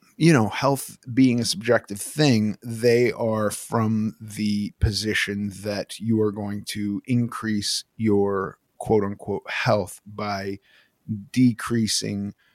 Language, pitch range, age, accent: English, 105-120 Hz, 30-49, American